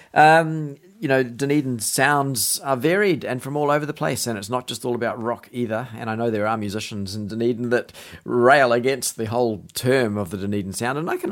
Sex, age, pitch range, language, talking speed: male, 40-59, 105-135 Hz, English, 225 wpm